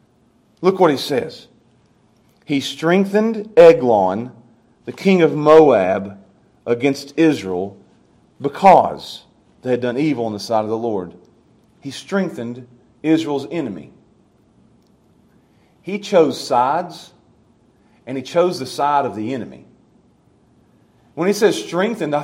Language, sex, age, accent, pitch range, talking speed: English, male, 40-59, American, 140-240 Hz, 120 wpm